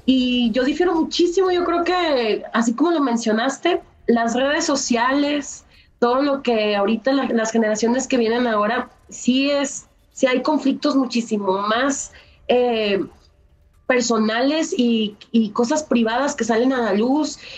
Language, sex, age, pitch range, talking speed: Spanish, female, 30-49, 220-275 Hz, 145 wpm